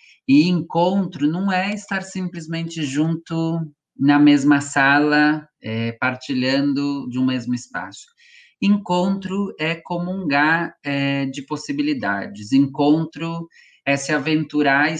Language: Portuguese